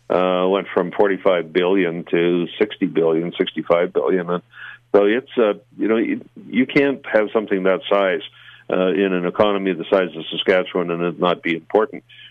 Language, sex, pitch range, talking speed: English, male, 90-110 Hz, 175 wpm